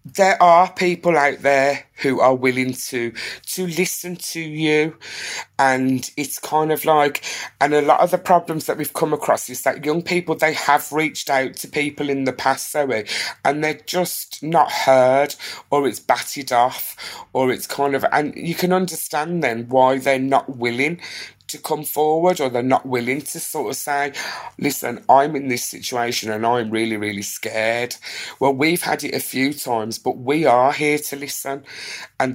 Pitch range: 125-150 Hz